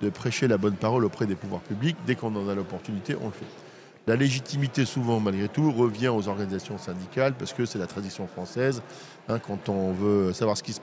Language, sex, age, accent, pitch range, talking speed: French, male, 50-69, French, 105-130 Hz, 215 wpm